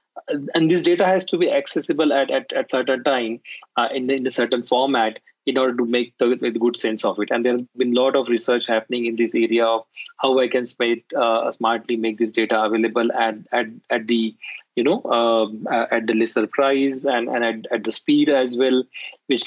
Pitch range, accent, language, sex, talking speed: 110-125 Hz, Indian, English, male, 215 wpm